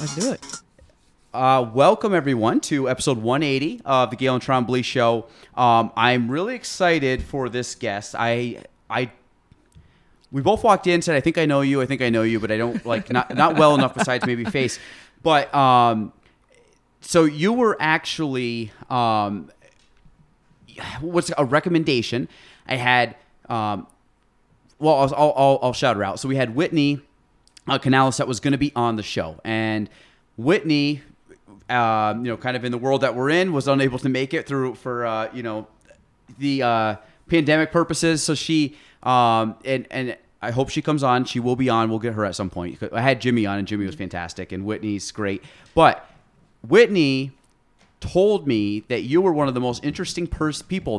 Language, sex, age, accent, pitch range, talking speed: English, male, 30-49, American, 115-145 Hz, 185 wpm